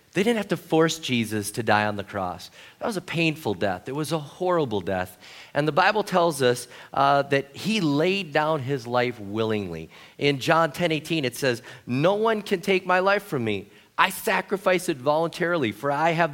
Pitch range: 125-170 Hz